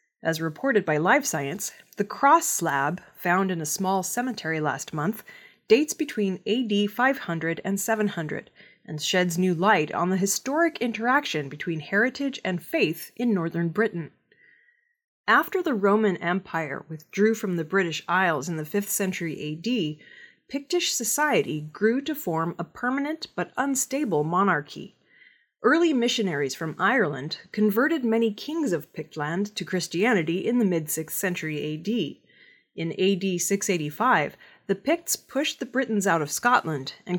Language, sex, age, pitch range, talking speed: English, female, 30-49, 165-245 Hz, 140 wpm